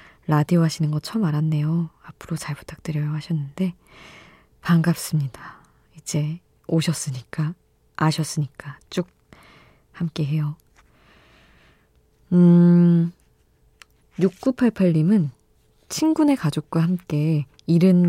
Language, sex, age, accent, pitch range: Korean, female, 20-39, native, 145-175 Hz